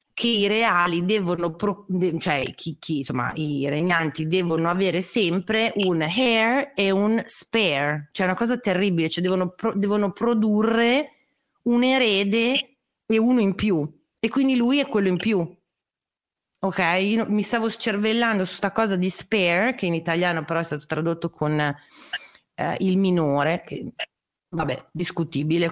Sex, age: female, 30-49